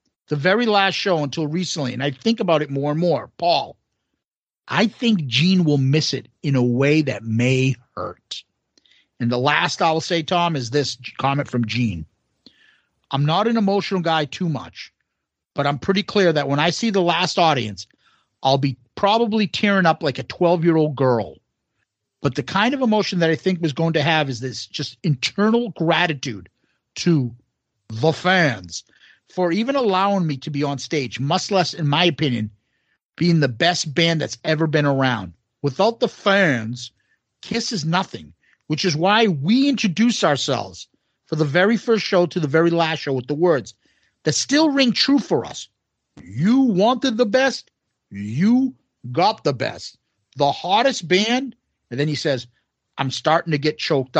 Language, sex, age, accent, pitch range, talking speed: English, male, 50-69, American, 135-185 Hz, 175 wpm